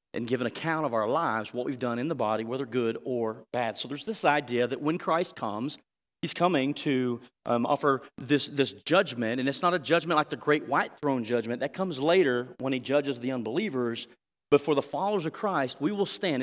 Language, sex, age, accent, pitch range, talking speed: English, male, 40-59, American, 125-185 Hz, 225 wpm